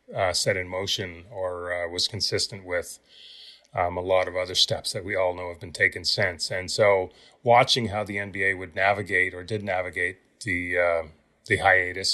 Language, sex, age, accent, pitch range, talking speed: English, male, 30-49, American, 95-110 Hz, 190 wpm